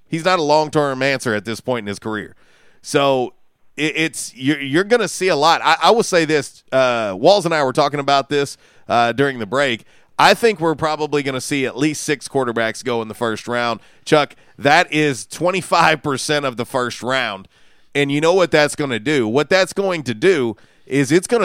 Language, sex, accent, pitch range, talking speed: English, male, American, 125-160 Hz, 210 wpm